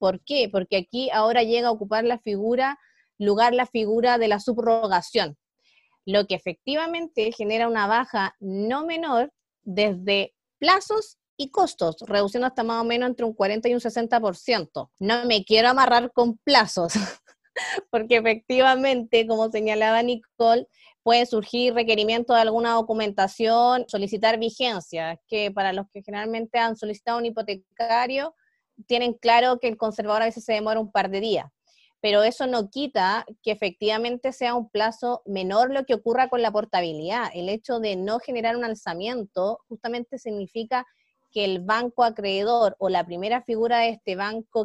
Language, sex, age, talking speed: Spanish, female, 20-39, 155 wpm